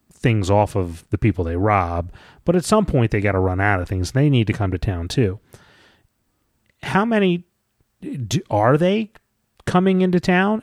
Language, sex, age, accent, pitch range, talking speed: English, male, 30-49, American, 105-135 Hz, 180 wpm